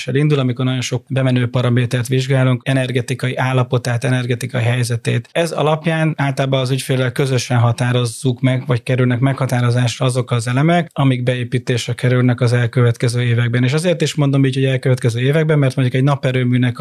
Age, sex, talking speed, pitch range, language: 30-49, male, 155 wpm, 125-135 Hz, Hungarian